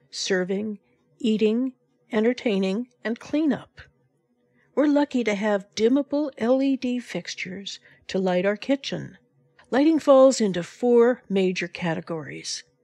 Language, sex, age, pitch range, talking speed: English, female, 60-79, 185-245 Hz, 105 wpm